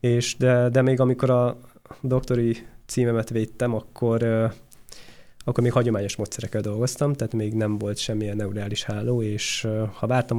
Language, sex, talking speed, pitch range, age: Hungarian, male, 145 wpm, 110-125 Hz, 20-39